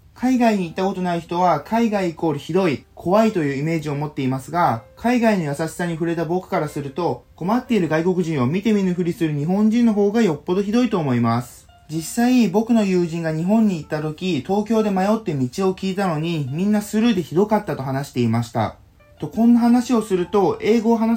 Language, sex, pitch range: Japanese, male, 155-215 Hz